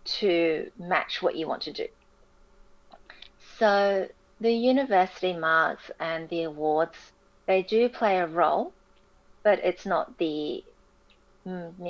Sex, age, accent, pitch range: female, 30-49, Australian, 170-200 Hz